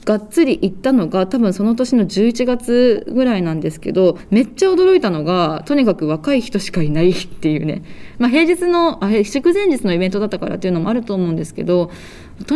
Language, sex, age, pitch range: Japanese, female, 20-39, 180-270 Hz